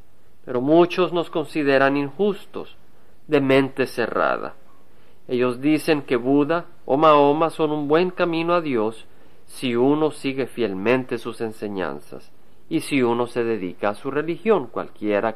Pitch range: 120-155 Hz